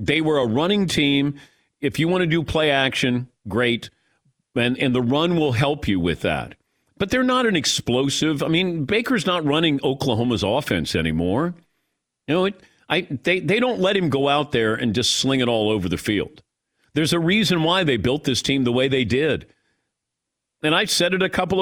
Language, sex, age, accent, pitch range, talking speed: English, male, 50-69, American, 125-175 Hz, 205 wpm